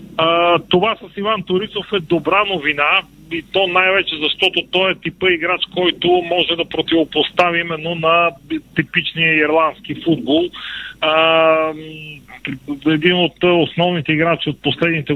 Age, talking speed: 40-59, 125 wpm